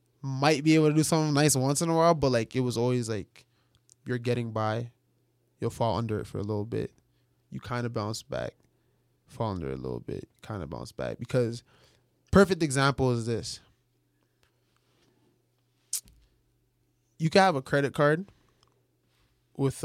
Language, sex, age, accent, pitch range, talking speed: English, male, 20-39, American, 120-145 Hz, 165 wpm